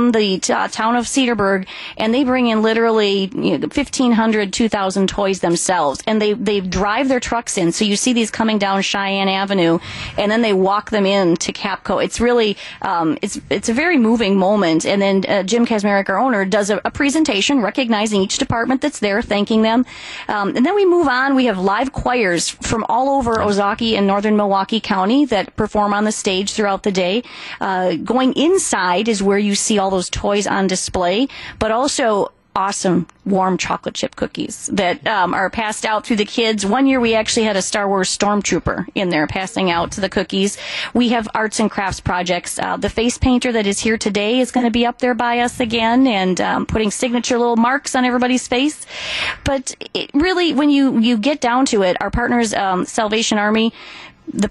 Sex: female